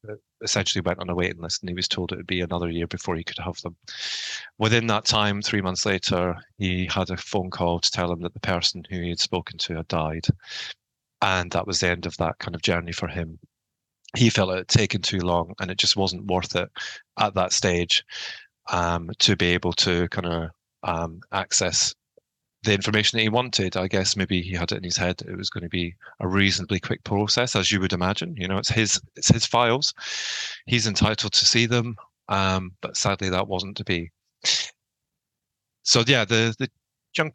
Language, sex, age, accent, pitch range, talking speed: English, male, 30-49, British, 90-115 Hz, 210 wpm